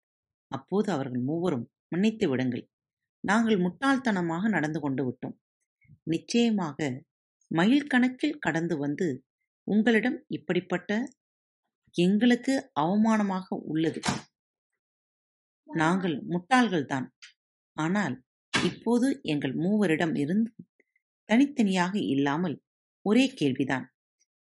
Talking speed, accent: 80 wpm, native